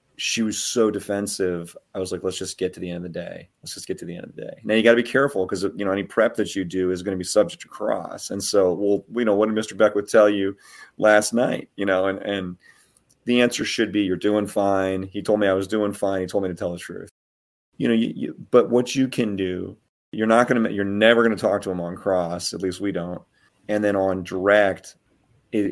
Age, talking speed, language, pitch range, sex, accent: 30-49, 270 wpm, English, 95-110 Hz, male, American